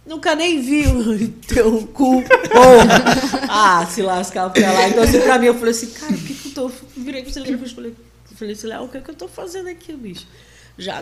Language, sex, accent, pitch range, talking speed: Portuguese, female, Brazilian, 160-230 Hz, 220 wpm